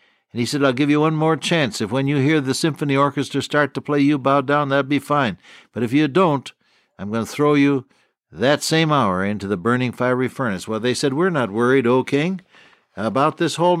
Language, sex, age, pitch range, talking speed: English, male, 60-79, 135-165 Hz, 230 wpm